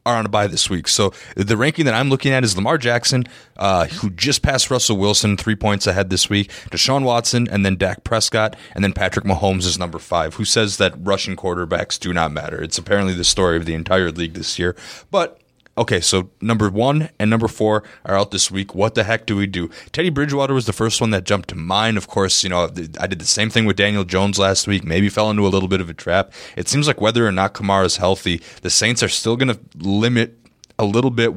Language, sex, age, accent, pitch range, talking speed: English, male, 20-39, American, 95-115 Hz, 245 wpm